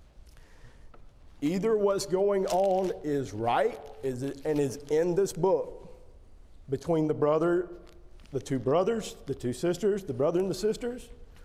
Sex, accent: male, American